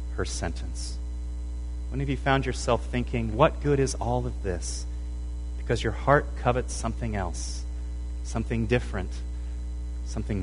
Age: 30-49